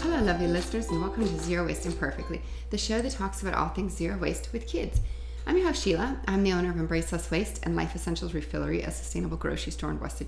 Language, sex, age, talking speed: English, female, 30-49, 240 wpm